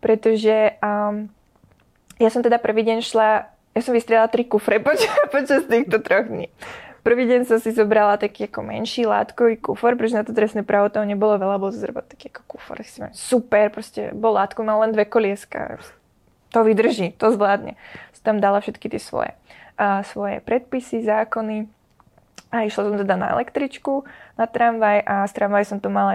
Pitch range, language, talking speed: 210-245 Hz, Czech, 170 wpm